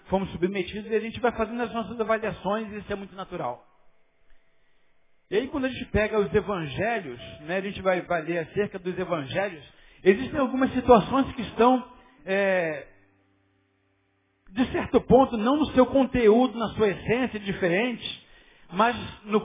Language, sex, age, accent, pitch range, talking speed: Portuguese, male, 50-69, Brazilian, 190-245 Hz, 150 wpm